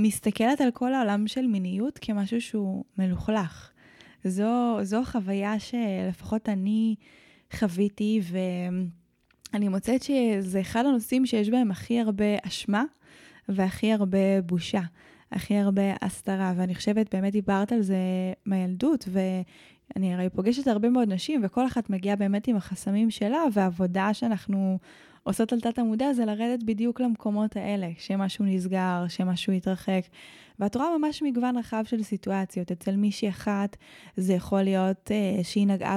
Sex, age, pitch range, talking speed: female, 20-39, 190-220 Hz, 135 wpm